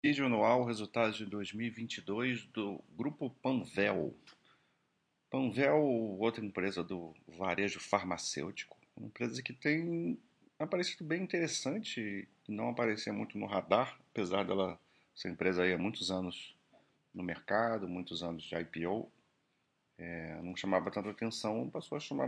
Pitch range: 85-110 Hz